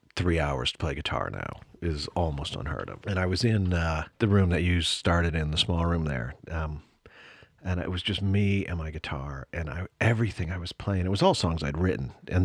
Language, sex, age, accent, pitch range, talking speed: English, male, 40-59, American, 85-105 Hz, 220 wpm